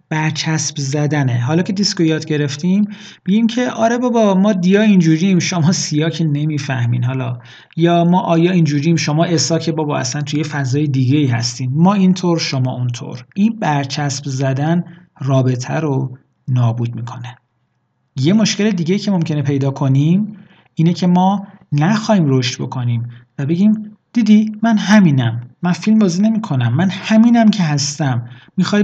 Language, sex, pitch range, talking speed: Persian, male, 135-190 Hz, 145 wpm